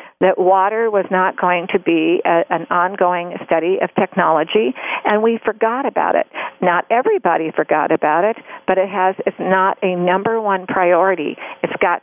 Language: English